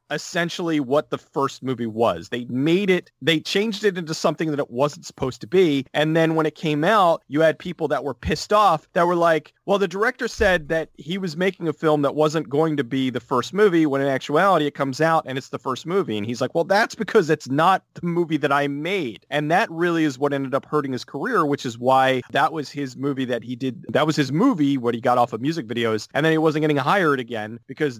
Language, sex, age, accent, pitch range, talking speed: English, male, 30-49, American, 125-160 Hz, 250 wpm